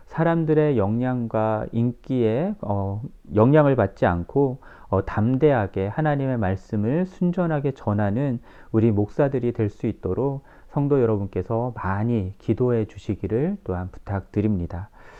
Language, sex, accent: Korean, male, native